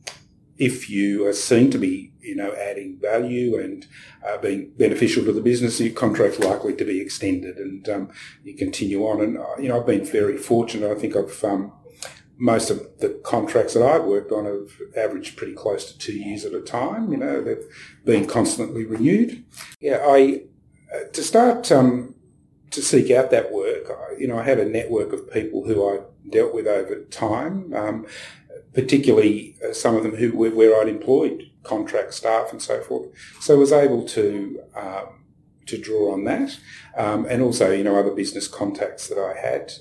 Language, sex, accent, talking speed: English, male, Australian, 190 wpm